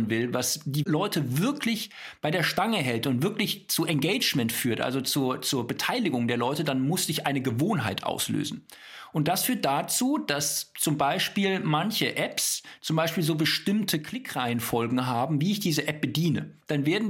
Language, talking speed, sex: German, 170 wpm, male